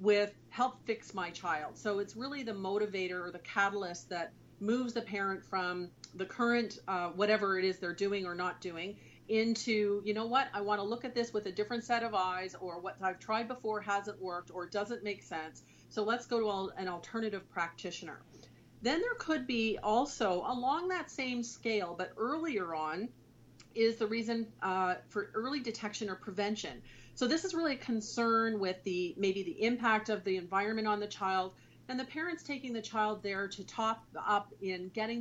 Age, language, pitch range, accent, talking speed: 40-59, English, 185-225 Hz, American, 190 wpm